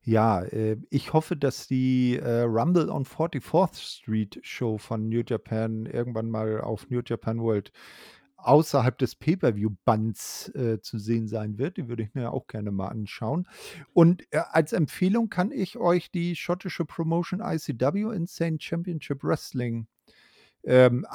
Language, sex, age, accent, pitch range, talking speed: German, male, 50-69, German, 120-155 Hz, 135 wpm